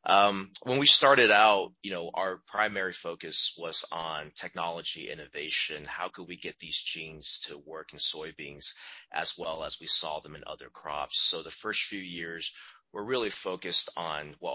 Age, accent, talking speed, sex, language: 30-49, American, 175 wpm, male, English